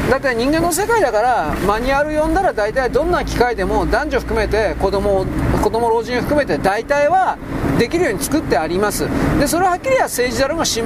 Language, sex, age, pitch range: Japanese, male, 40-59, 185-300 Hz